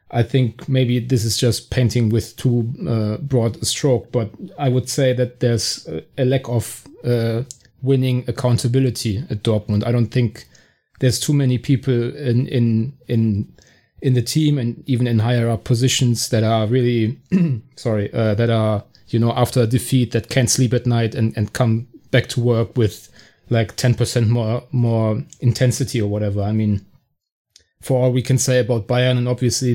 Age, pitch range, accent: 30-49, 115-130 Hz, German